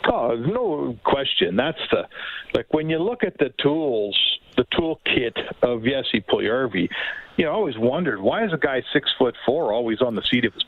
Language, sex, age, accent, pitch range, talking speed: English, male, 50-69, American, 135-195 Hz, 190 wpm